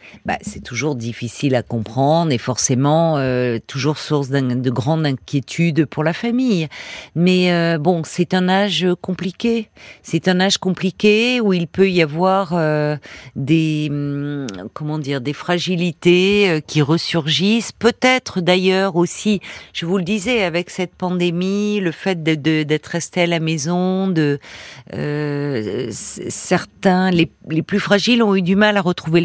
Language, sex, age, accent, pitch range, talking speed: French, female, 50-69, French, 150-190 Hz, 150 wpm